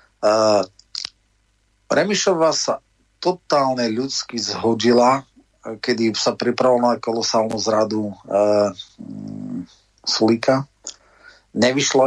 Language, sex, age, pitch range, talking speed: Slovak, male, 30-49, 110-125 Hz, 75 wpm